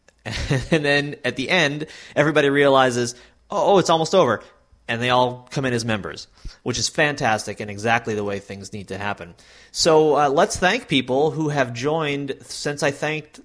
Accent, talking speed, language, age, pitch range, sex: American, 185 wpm, English, 30-49, 110-155 Hz, male